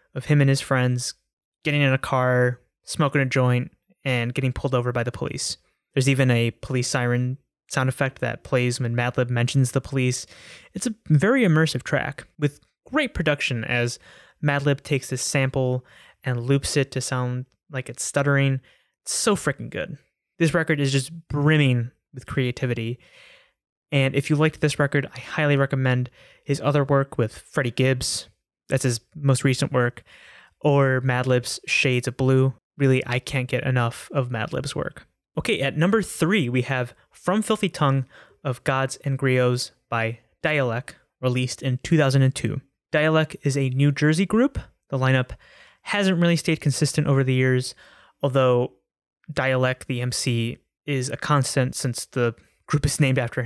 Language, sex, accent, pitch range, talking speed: English, male, American, 125-145 Hz, 165 wpm